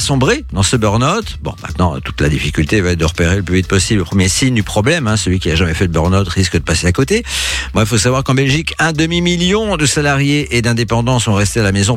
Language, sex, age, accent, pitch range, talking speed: French, male, 50-69, French, 95-145 Hz, 260 wpm